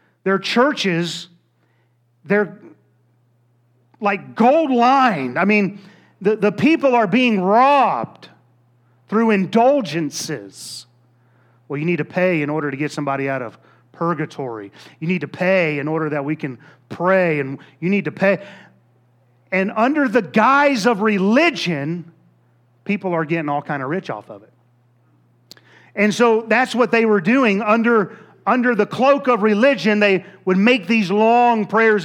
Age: 40-59